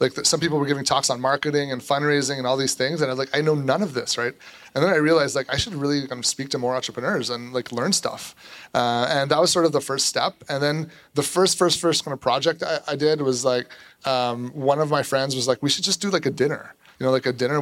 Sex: male